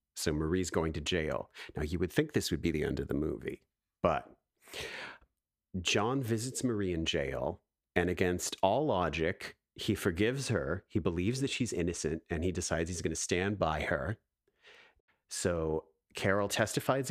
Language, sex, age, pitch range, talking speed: English, male, 40-59, 85-105 Hz, 165 wpm